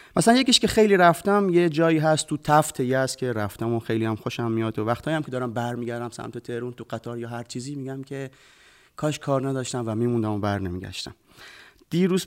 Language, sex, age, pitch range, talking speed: Persian, male, 30-49, 115-165 Hz, 215 wpm